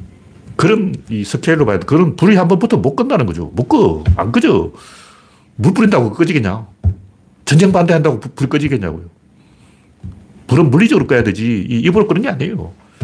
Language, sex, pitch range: Korean, male, 105-165 Hz